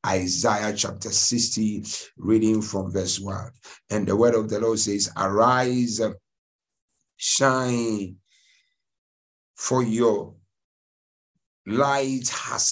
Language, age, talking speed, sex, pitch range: English, 60-79, 95 wpm, male, 100-125 Hz